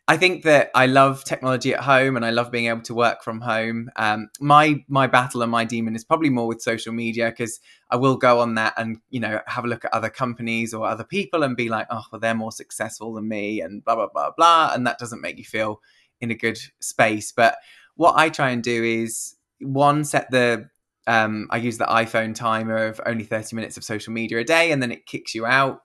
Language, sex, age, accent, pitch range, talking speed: English, male, 20-39, British, 110-125 Hz, 240 wpm